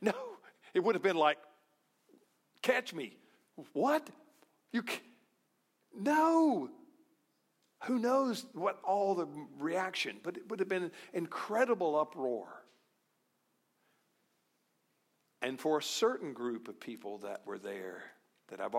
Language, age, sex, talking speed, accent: English, 50-69, male, 120 wpm, American